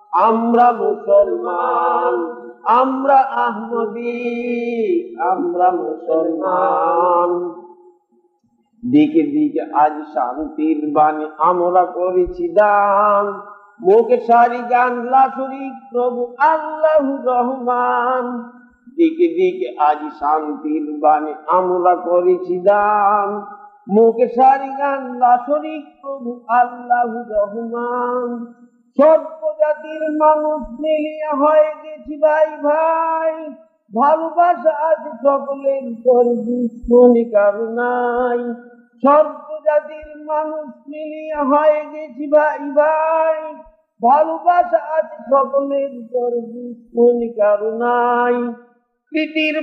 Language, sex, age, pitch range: Bengali, male, 50-69, 205-305 Hz